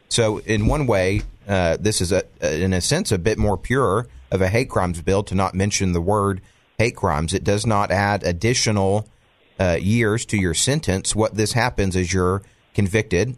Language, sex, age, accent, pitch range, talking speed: English, male, 40-59, American, 90-105 Hz, 190 wpm